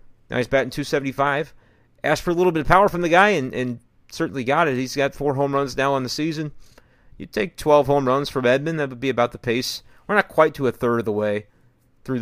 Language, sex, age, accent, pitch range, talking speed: English, male, 30-49, American, 125-155 Hz, 250 wpm